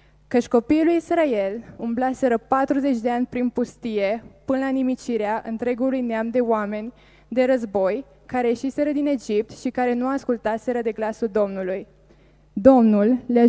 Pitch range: 220-255 Hz